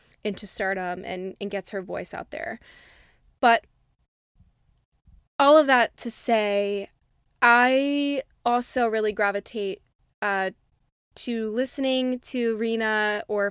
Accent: American